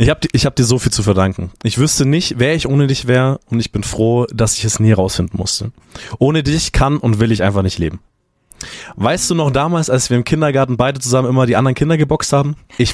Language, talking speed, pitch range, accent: German, 245 wpm, 105-140 Hz, German